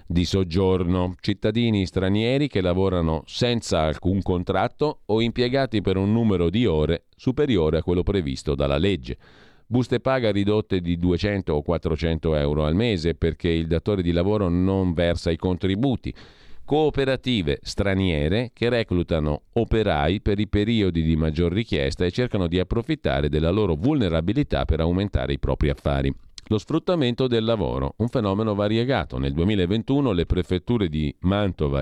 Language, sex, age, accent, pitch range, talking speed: Italian, male, 40-59, native, 85-110 Hz, 145 wpm